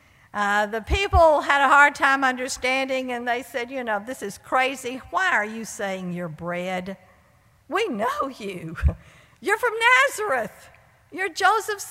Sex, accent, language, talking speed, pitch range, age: female, American, English, 150 wpm, 190-295 Hz, 60-79